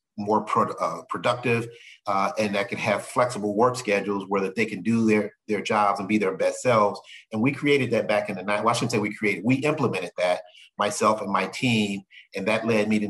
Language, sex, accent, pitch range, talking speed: English, male, American, 105-120 Hz, 225 wpm